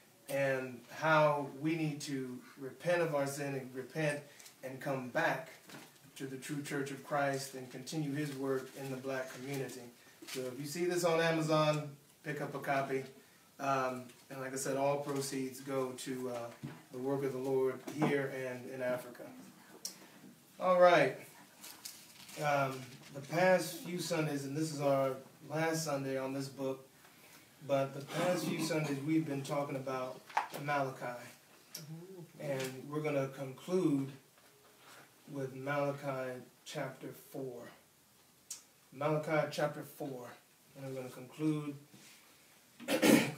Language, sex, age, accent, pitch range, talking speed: English, male, 30-49, American, 135-155 Hz, 140 wpm